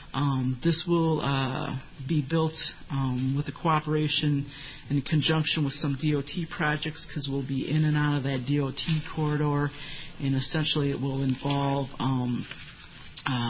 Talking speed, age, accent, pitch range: 145 wpm, 50-69, American, 135-150 Hz